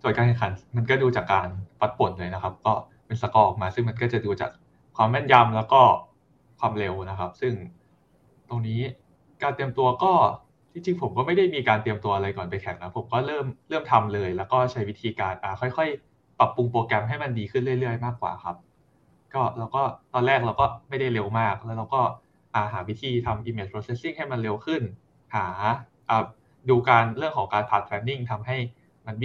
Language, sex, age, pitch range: Thai, male, 20-39, 100-125 Hz